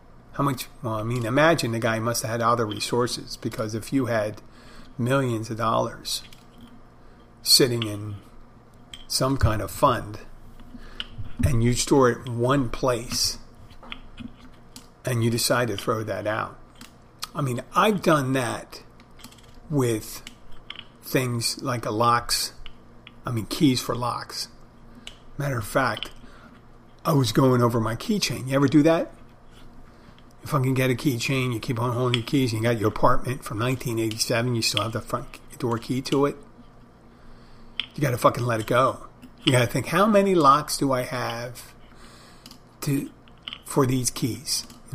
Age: 50-69